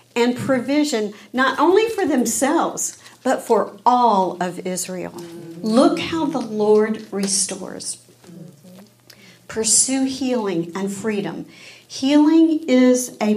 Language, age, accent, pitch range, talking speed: English, 50-69, American, 200-255 Hz, 105 wpm